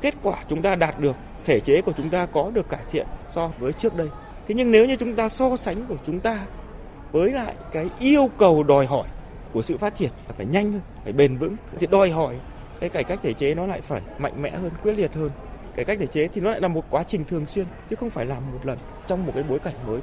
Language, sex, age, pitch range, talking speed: Vietnamese, male, 20-39, 130-175 Hz, 270 wpm